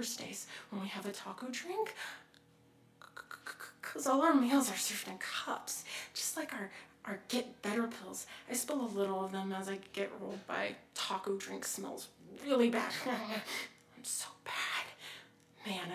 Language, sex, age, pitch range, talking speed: English, female, 30-49, 195-245 Hz, 160 wpm